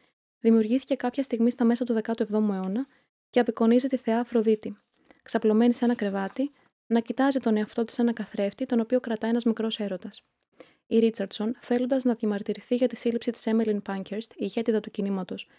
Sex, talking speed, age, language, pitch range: female, 175 wpm, 20-39, Greek, 215-245 Hz